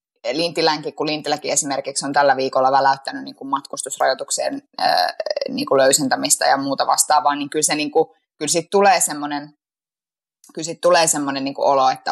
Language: Finnish